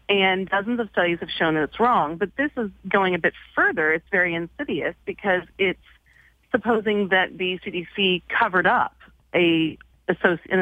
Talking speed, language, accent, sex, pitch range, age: 160 wpm, English, American, female, 165-200 Hz, 30-49